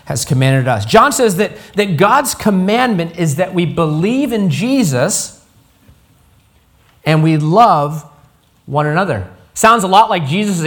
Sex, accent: male, American